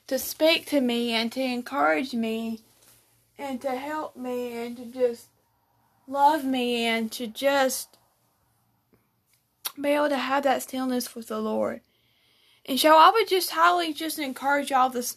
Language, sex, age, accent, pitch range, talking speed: English, female, 20-39, American, 230-280 Hz, 155 wpm